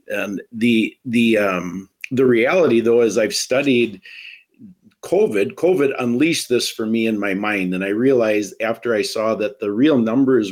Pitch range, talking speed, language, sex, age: 105-130 Hz, 165 wpm, English, male, 50-69